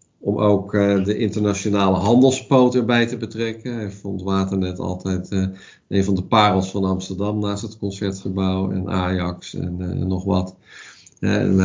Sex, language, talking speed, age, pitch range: male, Dutch, 145 wpm, 50-69, 95-105 Hz